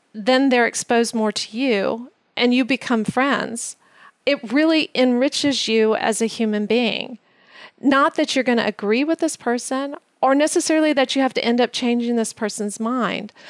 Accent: American